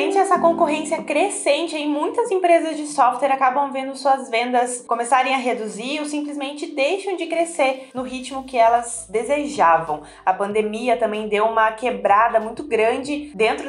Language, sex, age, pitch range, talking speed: Portuguese, female, 20-39, 215-275 Hz, 150 wpm